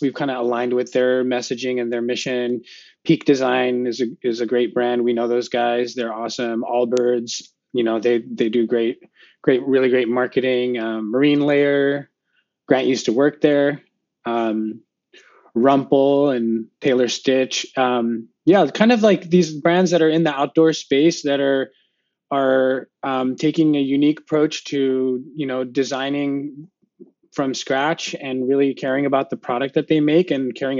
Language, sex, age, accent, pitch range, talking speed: English, male, 20-39, American, 120-140 Hz, 170 wpm